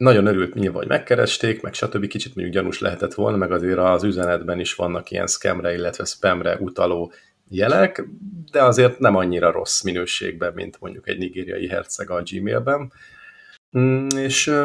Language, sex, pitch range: Hungarian, male, 90-110 Hz